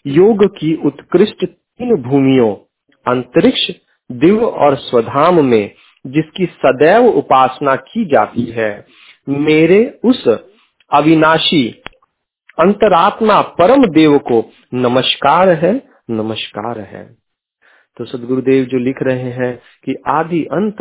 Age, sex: 40-59, male